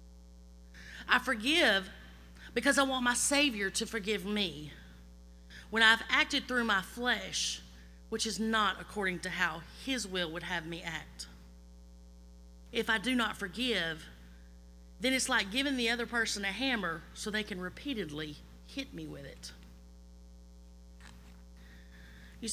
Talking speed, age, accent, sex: 135 wpm, 30-49, American, female